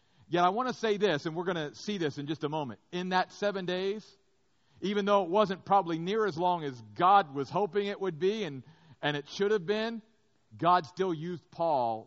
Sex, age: male, 50-69